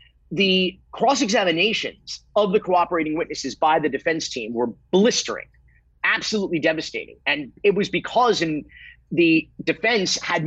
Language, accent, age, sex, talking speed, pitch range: English, American, 30-49, male, 125 wpm, 150-205 Hz